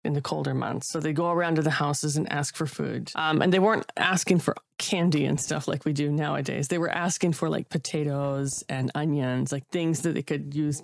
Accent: American